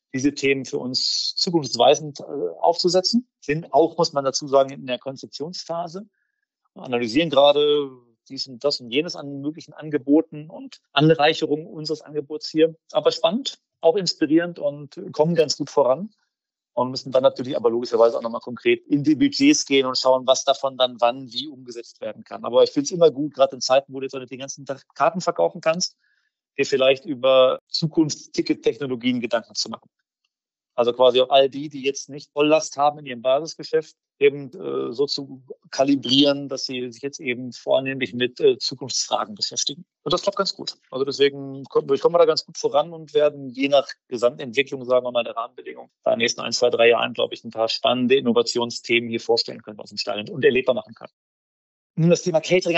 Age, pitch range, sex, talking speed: 40-59, 130-170 Hz, male, 190 wpm